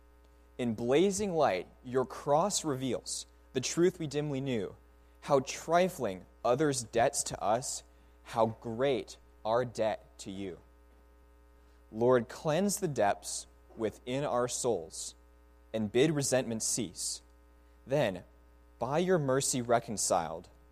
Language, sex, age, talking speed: English, male, 20-39, 115 wpm